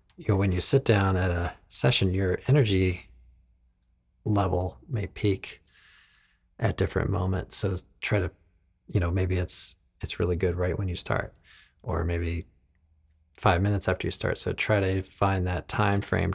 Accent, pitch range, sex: American, 80-95 Hz, male